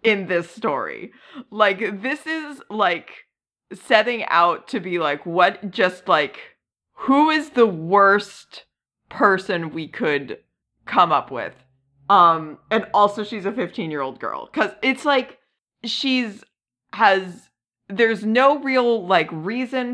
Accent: American